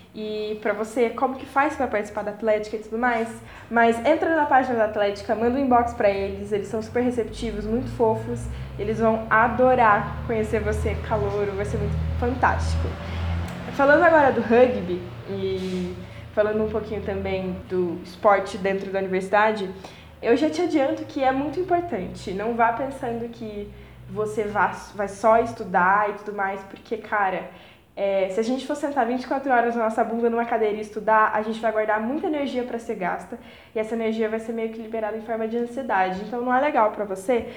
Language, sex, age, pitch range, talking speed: Portuguese, female, 10-29, 200-240 Hz, 190 wpm